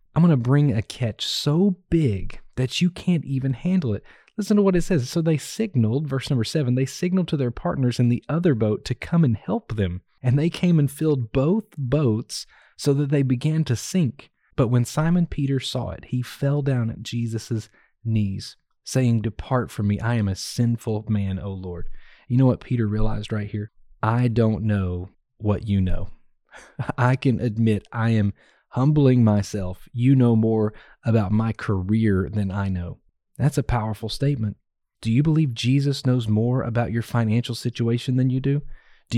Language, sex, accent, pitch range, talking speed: English, male, American, 110-140 Hz, 185 wpm